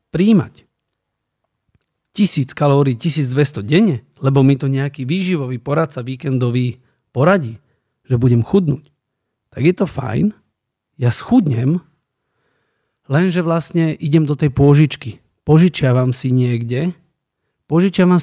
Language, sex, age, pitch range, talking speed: Slovak, male, 40-59, 130-160 Hz, 105 wpm